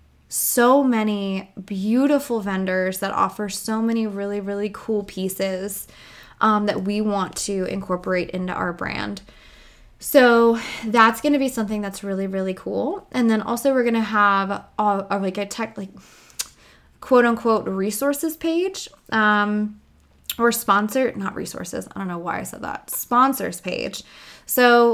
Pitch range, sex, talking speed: 195-235 Hz, female, 150 wpm